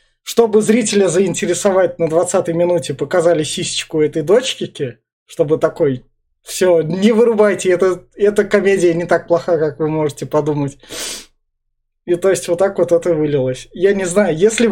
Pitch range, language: 155-195 Hz, Russian